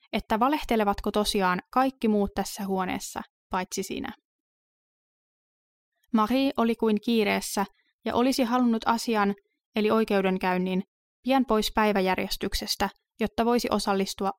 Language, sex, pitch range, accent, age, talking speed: Finnish, female, 200-235 Hz, native, 20-39, 105 wpm